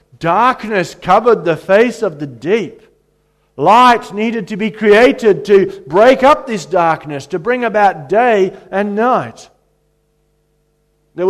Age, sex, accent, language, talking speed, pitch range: 50-69, male, Australian, English, 125 wpm, 150-205 Hz